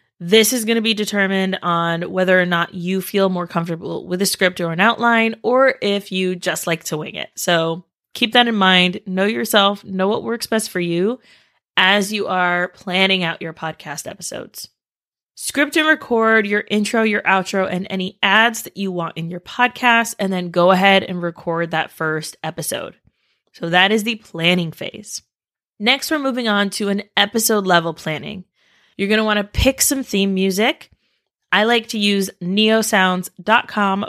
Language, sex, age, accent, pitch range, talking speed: English, female, 20-39, American, 180-220 Hz, 180 wpm